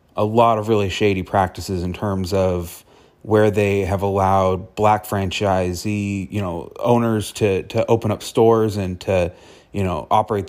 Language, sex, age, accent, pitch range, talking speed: English, male, 30-49, American, 95-110 Hz, 160 wpm